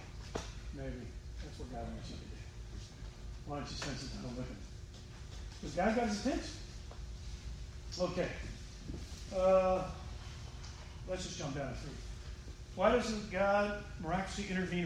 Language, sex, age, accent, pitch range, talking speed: English, male, 40-59, American, 140-180 Hz, 140 wpm